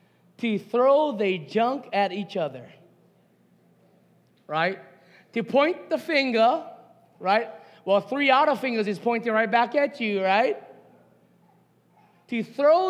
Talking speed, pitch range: 125 wpm, 210-280 Hz